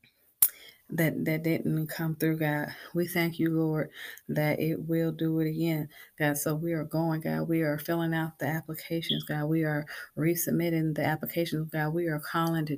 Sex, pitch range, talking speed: female, 150-165 Hz, 185 wpm